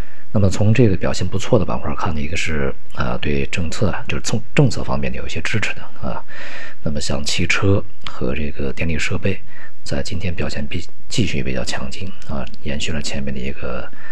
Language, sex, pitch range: Chinese, male, 70-90 Hz